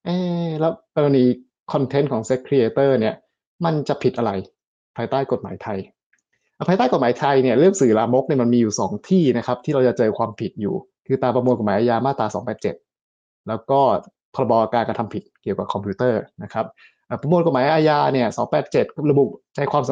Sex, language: male, Thai